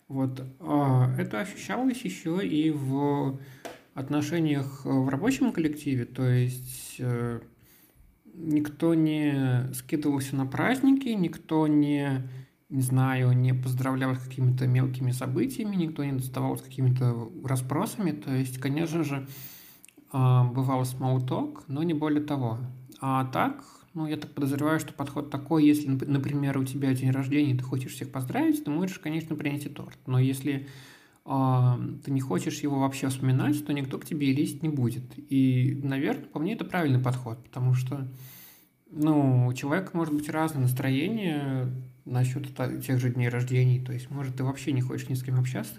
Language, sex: Russian, male